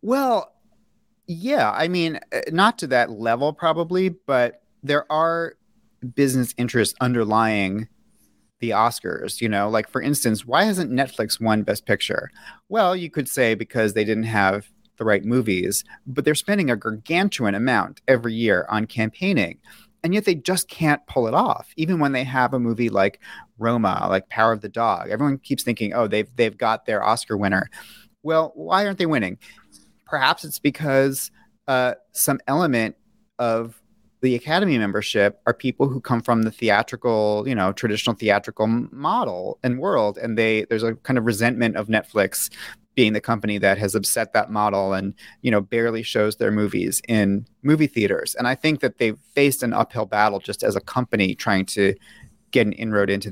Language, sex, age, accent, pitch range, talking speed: English, male, 30-49, American, 110-145 Hz, 175 wpm